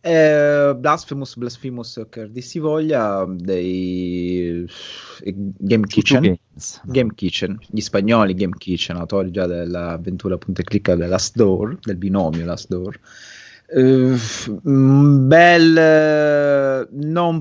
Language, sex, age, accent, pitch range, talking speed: Italian, male, 30-49, native, 95-125 Hz, 105 wpm